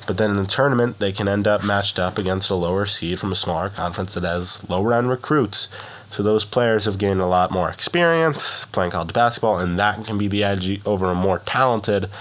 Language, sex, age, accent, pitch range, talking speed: English, male, 20-39, American, 90-110 Hz, 220 wpm